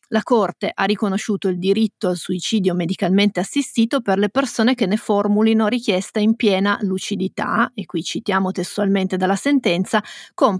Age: 30-49